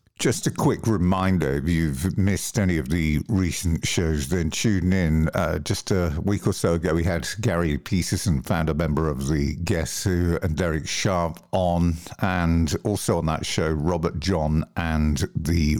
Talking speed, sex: 175 wpm, male